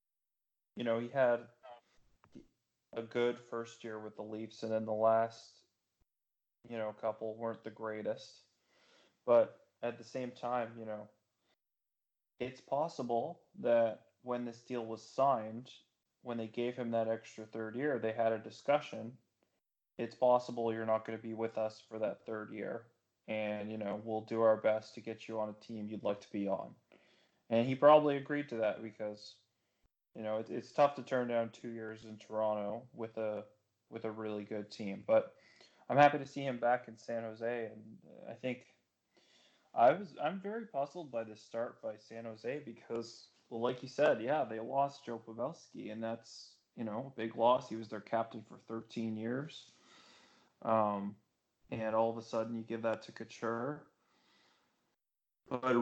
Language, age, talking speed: English, 20-39, 175 wpm